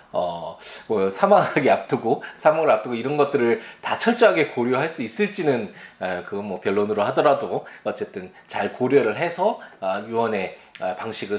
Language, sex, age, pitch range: Korean, male, 20-39, 115-175 Hz